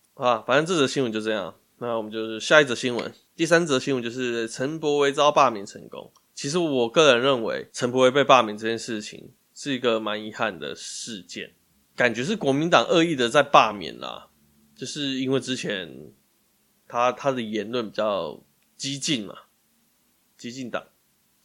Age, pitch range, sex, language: 20-39, 115-145 Hz, male, Chinese